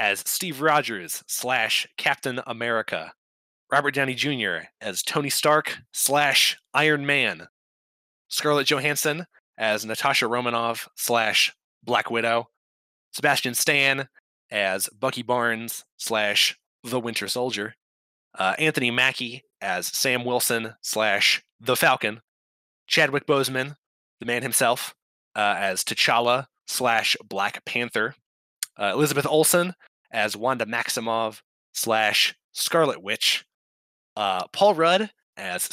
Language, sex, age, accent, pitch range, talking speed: English, male, 20-39, American, 110-145 Hz, 110 wpm